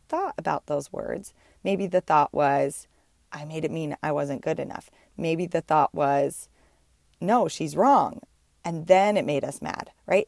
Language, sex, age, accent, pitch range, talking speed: English, female, 20-39, American, 155-200 Hz, 175 wpm